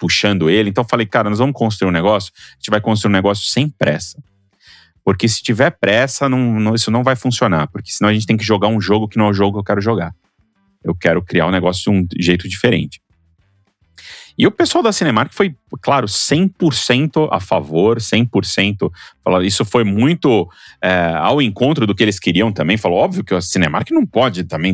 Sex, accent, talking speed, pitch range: male, Brazilian, 210 wpm, 95-130 Hz